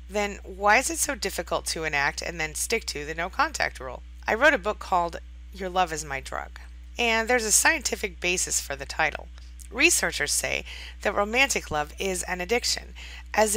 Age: 30-49